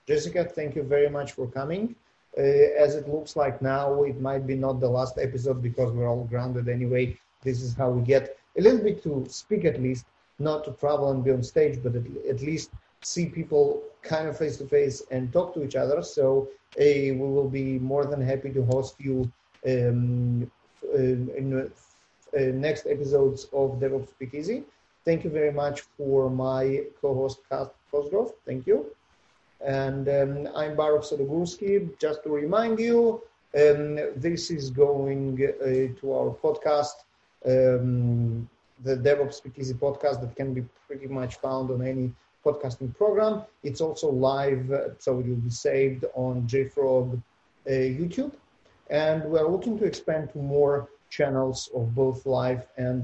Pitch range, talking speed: 130-150 Hz, 165 wpm